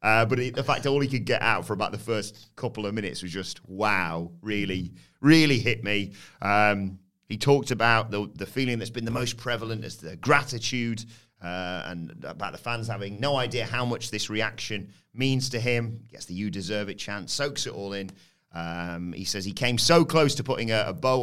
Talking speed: 220 wpm